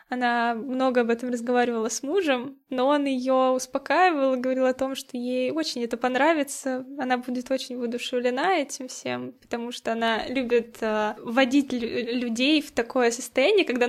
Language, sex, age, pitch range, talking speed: Russian, female, 10-29, 245-280 Hz, 150 wpm